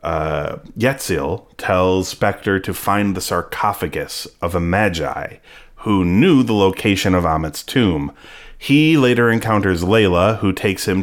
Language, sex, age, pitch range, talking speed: English, male, 30-49, 85-110 Hz, 135 wpm